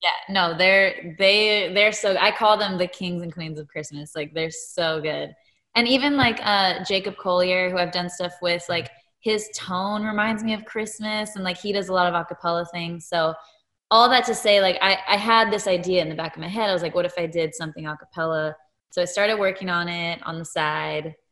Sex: female